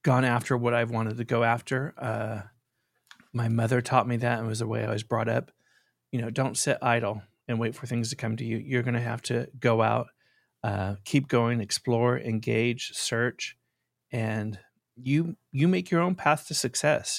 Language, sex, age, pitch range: English, male, 40-59, 110-125 Hz